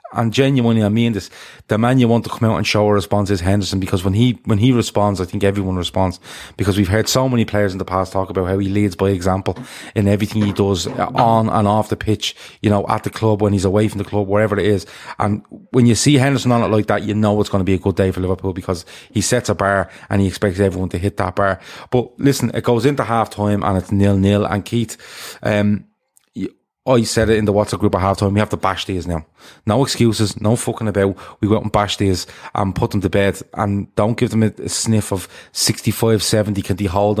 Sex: male